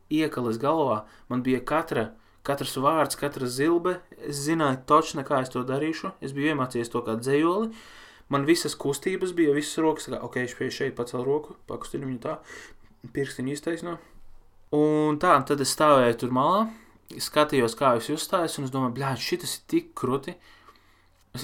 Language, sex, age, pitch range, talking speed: English, male, 20-39, 120-150 Hz, 155 wpm